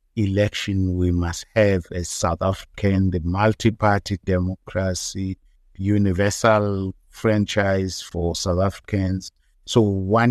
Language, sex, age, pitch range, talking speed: English, male, 50-69, 95-115 Hz, 100 wpm